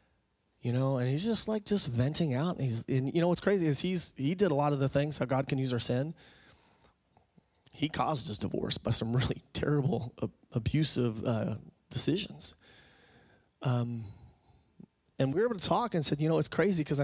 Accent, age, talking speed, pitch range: American, 30-49, 200 wpm, 130-175 Hz